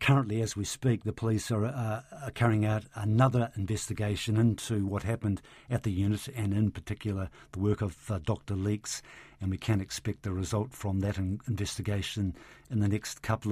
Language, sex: English, male